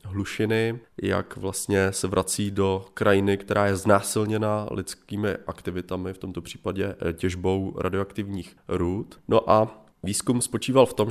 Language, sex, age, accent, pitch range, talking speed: Czech, male, 30-49, native, 90-105 Hz, 125 wpm